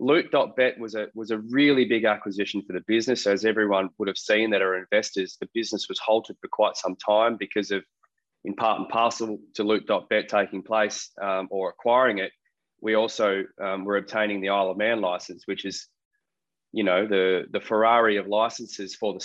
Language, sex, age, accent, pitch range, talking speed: English, male, 20-39, Australian, 100-115 Hz, 195 wpm